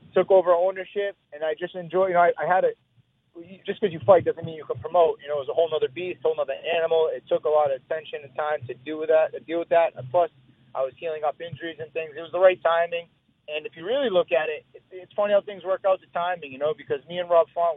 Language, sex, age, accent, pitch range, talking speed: English, male, 30-49, American, 145-180 Hz, 290 wpm